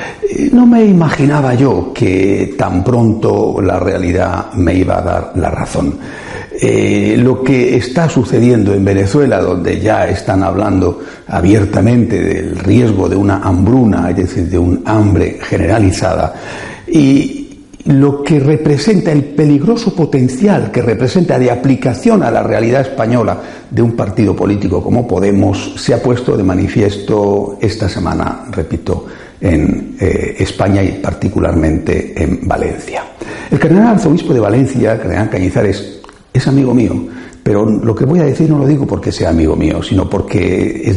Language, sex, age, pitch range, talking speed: Spanish, male, 60-79, 100-145 Hz, 145 wpm